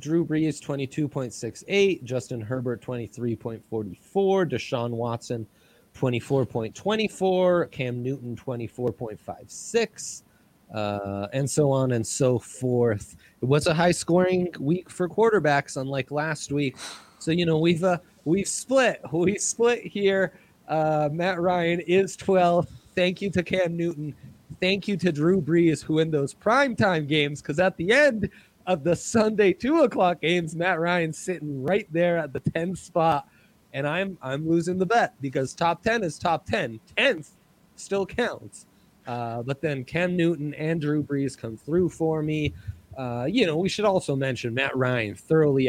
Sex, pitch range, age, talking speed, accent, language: male, 130-180 Hz, 30-49, 150 wpm, American, English